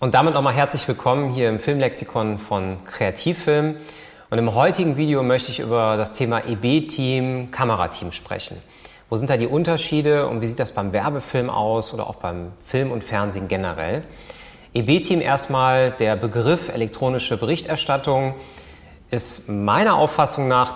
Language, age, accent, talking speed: German, 30-49, German, 145 wpm